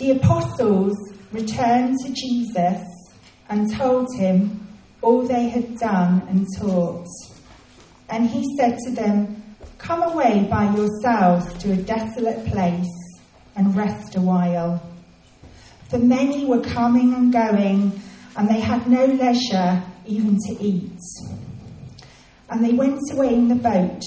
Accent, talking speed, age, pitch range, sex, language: British, 130 wpm, 40-59, 185-240 Hz, female, English